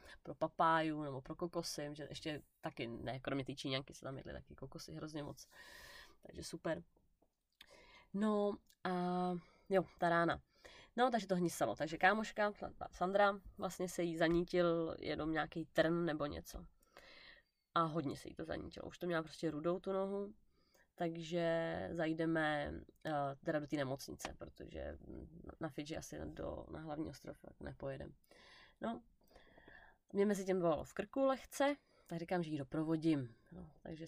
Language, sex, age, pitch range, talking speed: Czech, female, 20-39, 160-190 Hz, 150 wpm